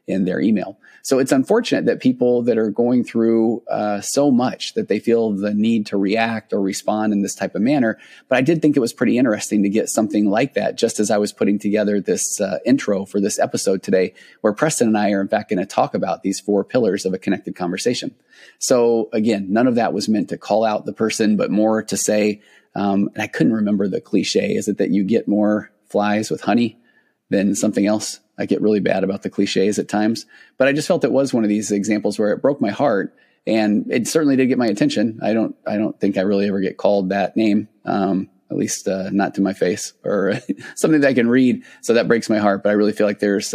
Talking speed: 245 wpm